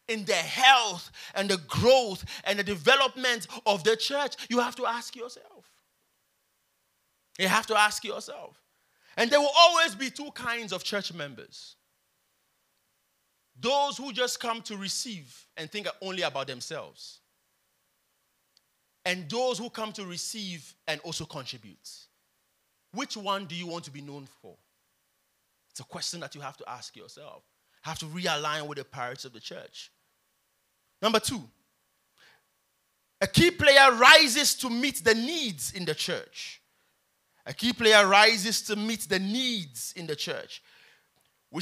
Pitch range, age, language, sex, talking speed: 190-250 Hz, 30-49, English, male, 150 wpm